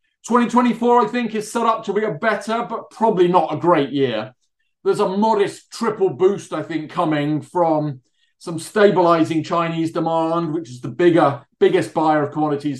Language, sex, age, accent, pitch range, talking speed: English, male, 30-49, British, 145-185 Hz, 175 wpm